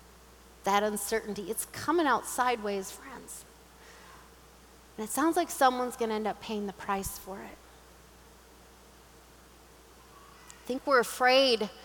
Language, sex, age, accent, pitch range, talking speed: English, female, 30-49, American, 210-255 Hz, 125 wpm